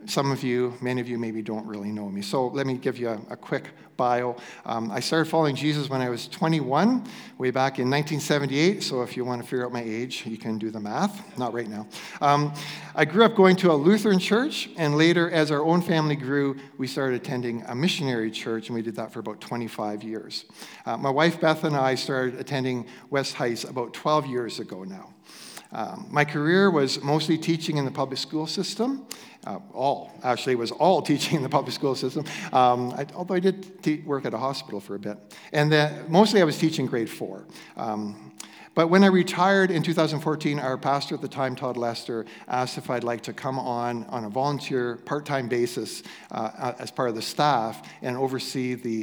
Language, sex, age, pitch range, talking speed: English, male, 50-69, 120-155 Hz, 215 wpm